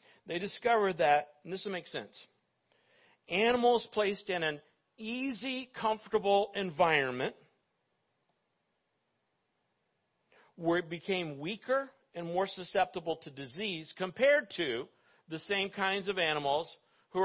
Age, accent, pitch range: 50-69, American, 155-200 Hz